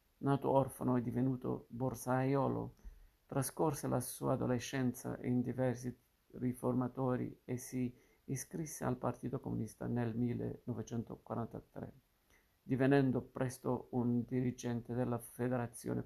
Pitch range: 120-130 Hz